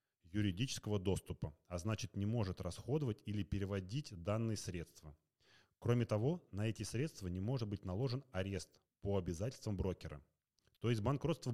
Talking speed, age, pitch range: 140 wpm, 30-49, 90-115 Hz